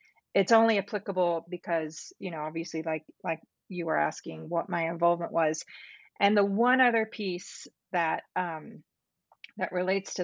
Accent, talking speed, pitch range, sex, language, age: American, 150 wpm, 165-200 Hz, female, English, 40-59